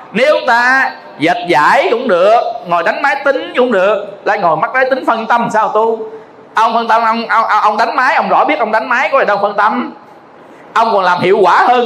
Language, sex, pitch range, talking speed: Vietnamese, male, 200-305 Hz, 235 wpm